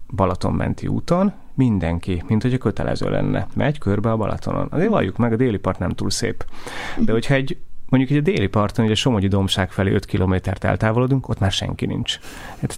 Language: Hungarian